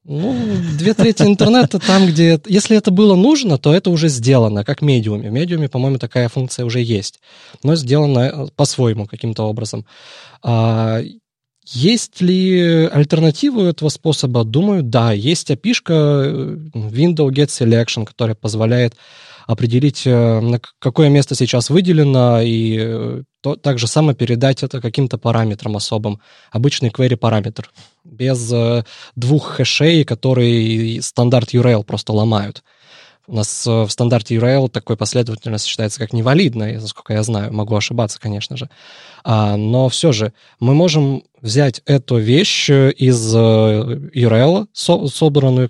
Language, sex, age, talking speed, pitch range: Russian, male, 20-39, 125 wpm, 115-150 Hz